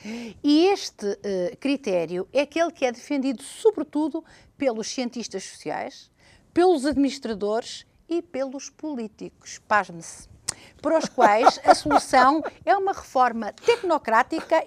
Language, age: Portuguese, 50-69